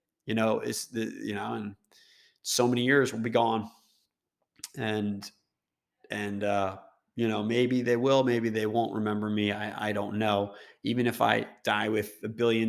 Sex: male